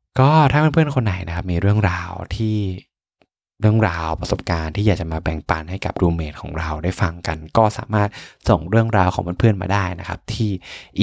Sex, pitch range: male, 85-110 Hz